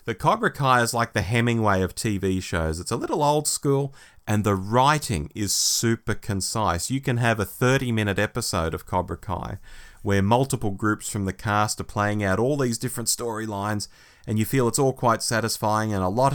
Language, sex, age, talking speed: English, male, 30-49, 195 wpm